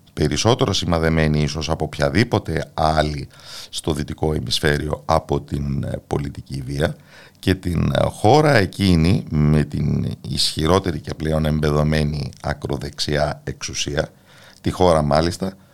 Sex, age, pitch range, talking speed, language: male, 50-69, 75-105 Hz, 105 wpm, Greek